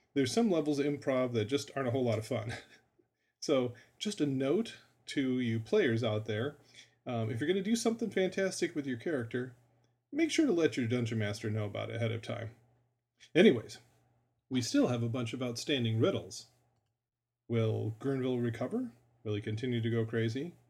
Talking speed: 185 wpm